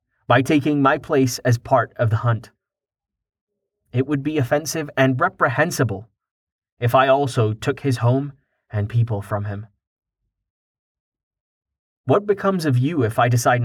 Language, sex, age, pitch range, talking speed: English, male, 30-49, 110-130 Hz, 140 wpm